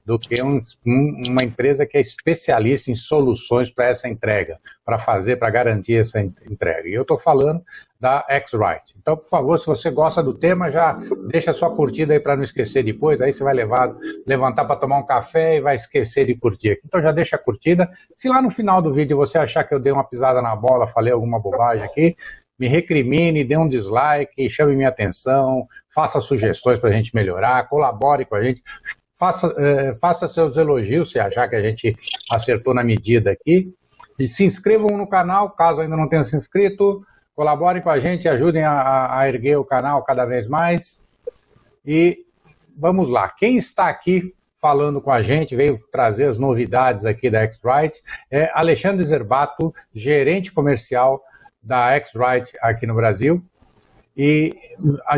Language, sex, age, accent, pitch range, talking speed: Portuguese, male, 60-79, Brazilian, 125-165 Hz, 180 wpm